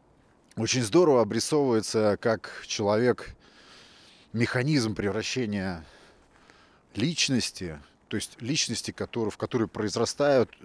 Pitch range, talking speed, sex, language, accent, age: 90-110 Hz, 80 wpm, male, Russian, native, 30-49